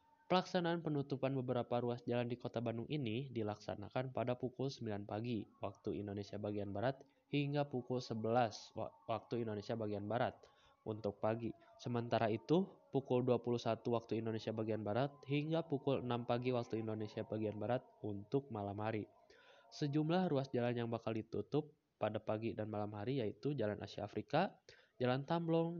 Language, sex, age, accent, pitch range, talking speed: Indonesian, male, 20-39, native, 110-140 Hz, 145 wpm